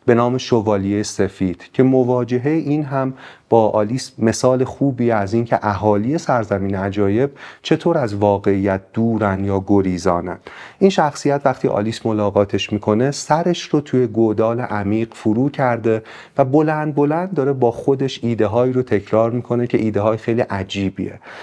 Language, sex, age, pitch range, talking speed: Persian, male, 40-59, 105-135 Hz, 145 wpm